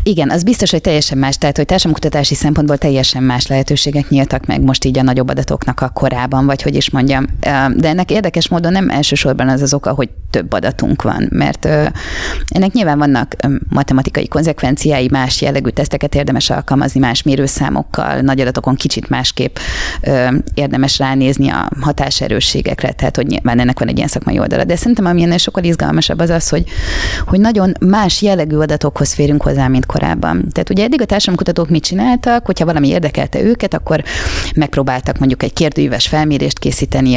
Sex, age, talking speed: female, 20-39, 170 wpm